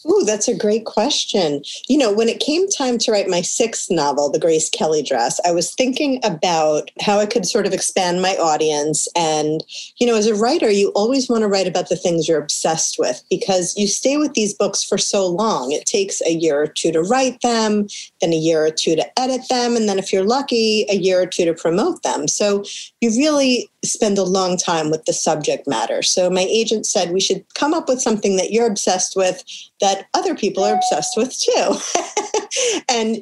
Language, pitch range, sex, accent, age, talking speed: English, 175-230 Hz, female, American, 30-49, 215 wpm